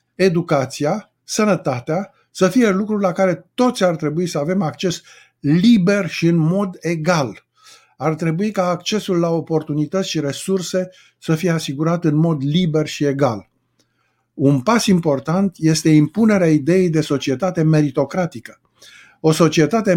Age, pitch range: 50-69, 145-190 Hz